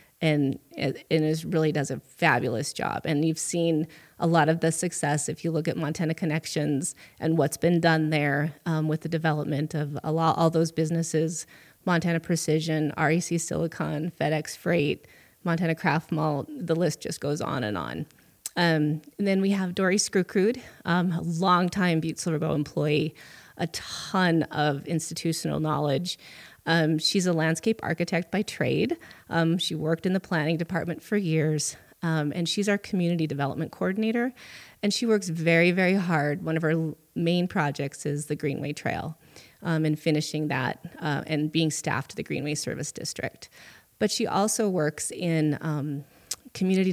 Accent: American